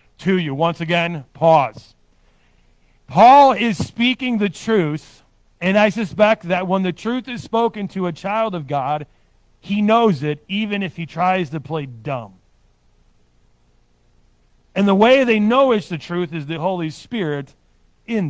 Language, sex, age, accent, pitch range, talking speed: English, male, 40-59, American, 140-215 Hz, 155 wpm